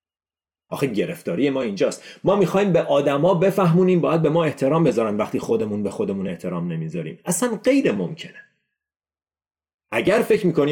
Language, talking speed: Persian, 145 wpm